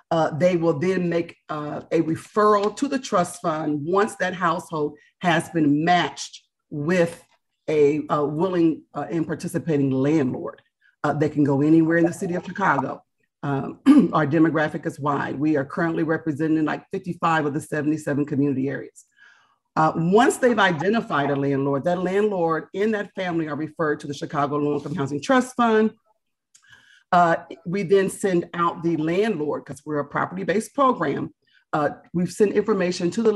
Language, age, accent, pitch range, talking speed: English, 40-59, American, 150-195 Hz, 165 wpm